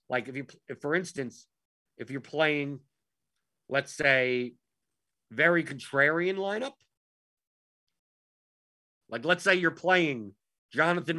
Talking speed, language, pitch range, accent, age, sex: 105 wpm, English, 120-160 Hz, American, 50-69, male